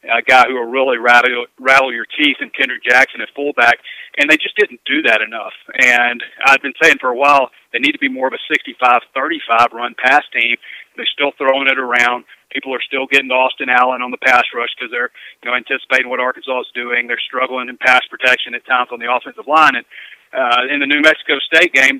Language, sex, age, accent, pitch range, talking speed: English, male, 40-59, American, 120-140 Hz, 225 wpm